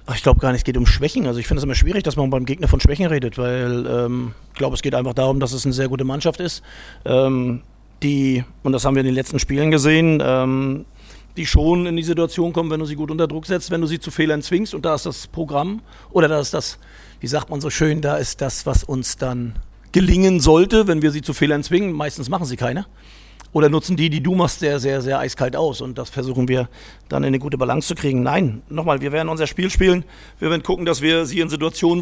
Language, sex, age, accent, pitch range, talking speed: German, male, 50-69, German, 135-170 Hz, 255 wpm